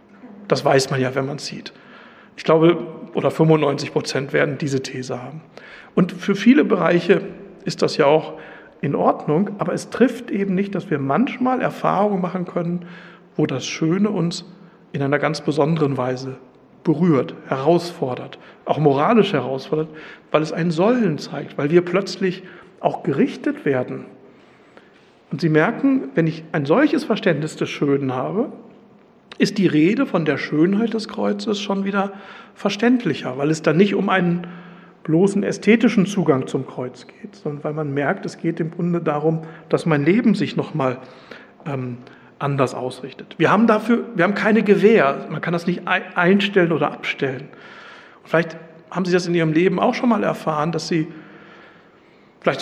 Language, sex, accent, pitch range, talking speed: German, male, German, 150-195 Hz, 160 wpm